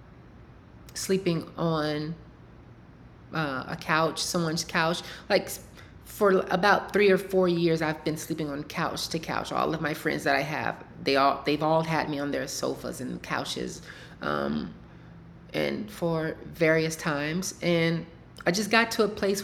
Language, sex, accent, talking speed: English, female, American, 165 wpm